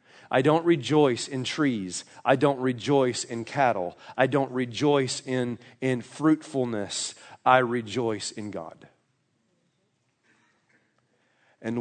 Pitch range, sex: 120-155 Hz, male